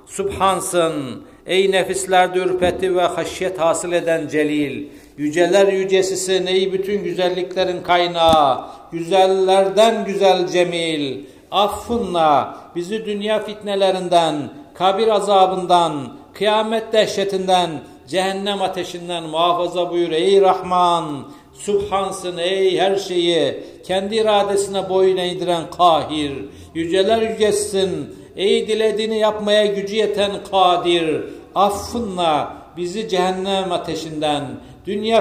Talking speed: 90 wpm